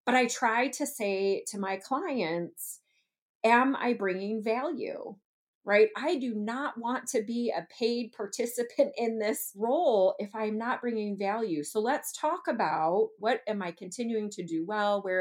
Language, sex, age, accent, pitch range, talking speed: English, female, 30-49, American, 180-265 Hz, 165 wpm